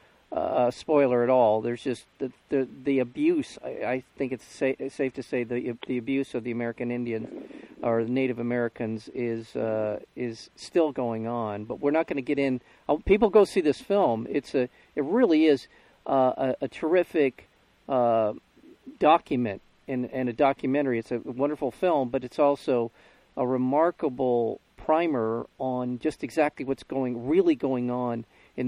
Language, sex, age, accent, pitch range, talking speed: English, male, 50-69, American, 120-140 Hz, 170 wpm